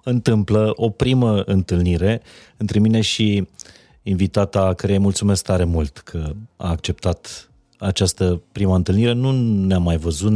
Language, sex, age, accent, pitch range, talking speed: Romanian, male, 30-49, native, 90-115 Hz, 135 wpm